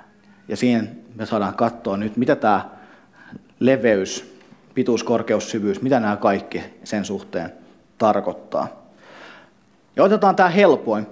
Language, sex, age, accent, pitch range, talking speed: Finnish, male, 30-49, native, 115-155 Hz, 120 wpm